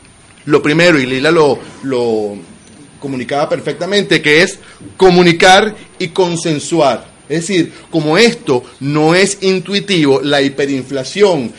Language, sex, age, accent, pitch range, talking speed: Spanish, male, 30-49, Venezuelan, 155-195 Hz, 115 wpm